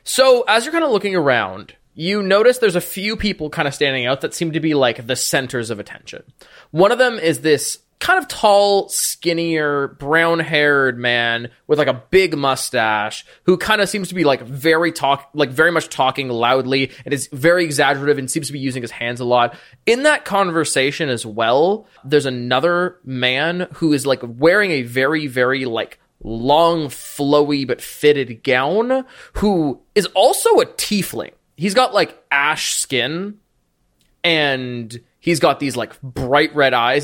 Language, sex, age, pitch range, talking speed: English, male, 20-39, 130-180 Hz, 175 wpm